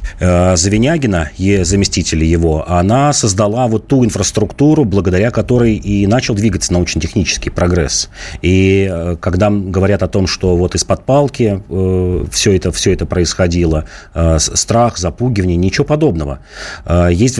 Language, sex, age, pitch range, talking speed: Russian, male, 30-49, 90-120 Hz, 115 wpm